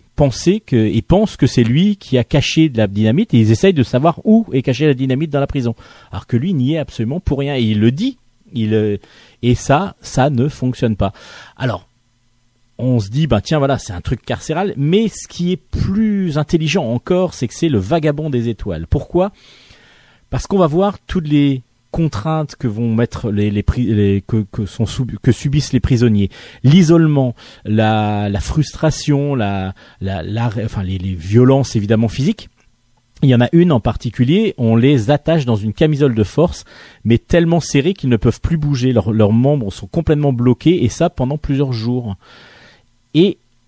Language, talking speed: French, 190 wpm